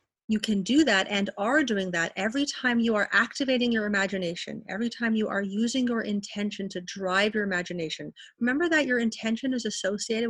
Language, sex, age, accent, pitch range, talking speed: English, female, 30-49, American, 195-240 Hz, 185 wpm